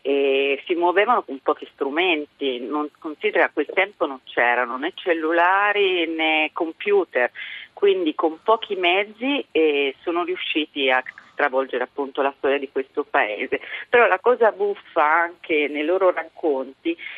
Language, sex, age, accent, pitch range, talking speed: Italian, female, 40-59, native, 150-205 Hz, 135 wpm